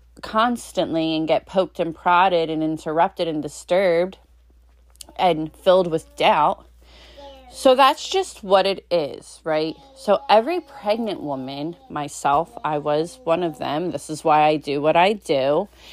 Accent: American